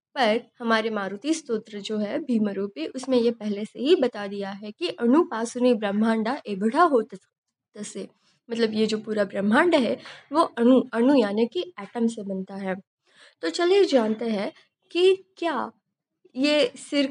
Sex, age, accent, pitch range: female, 20-39, native, 210-285 Hz